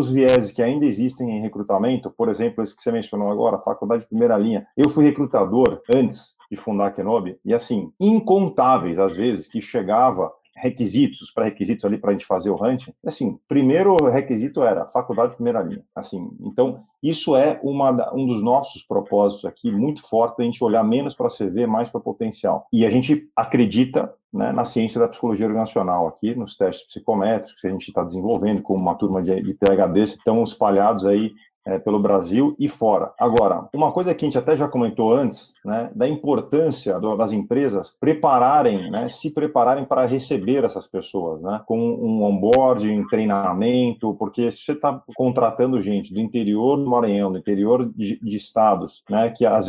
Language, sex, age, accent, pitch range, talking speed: Portuguese, male, 40-59, Brazilian, 105-145 Hz, 180 wpm